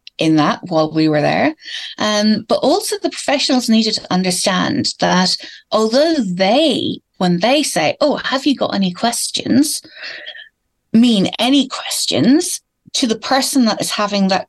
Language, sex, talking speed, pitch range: English, female, 150 wpm, 185-260 Hz